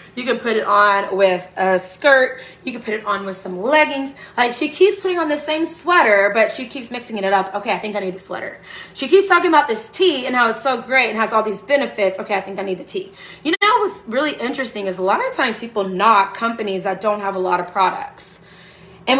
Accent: American